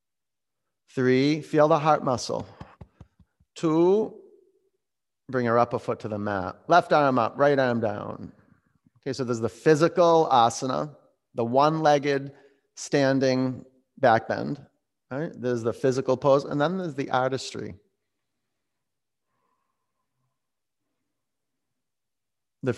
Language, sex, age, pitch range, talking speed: English, male, 30-49, 120-145 Hz, 115 wpm